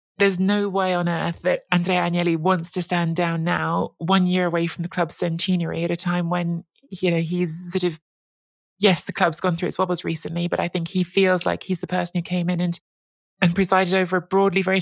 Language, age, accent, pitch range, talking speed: English, 30-49, British, 170-185 Hz, 225 wpm